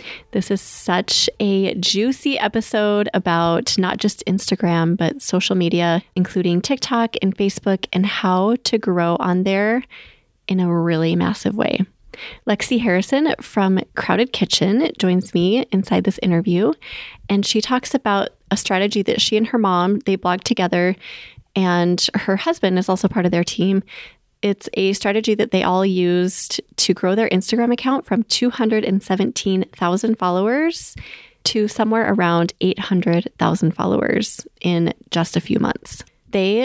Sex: female